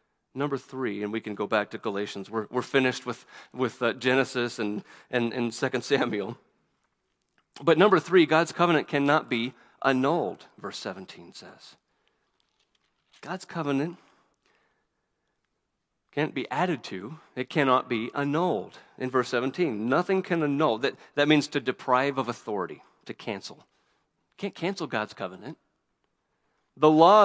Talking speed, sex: 140 wpm, male